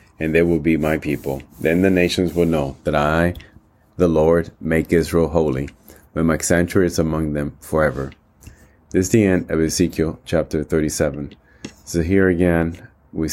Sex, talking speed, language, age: male, 165 wpm, English, 30-49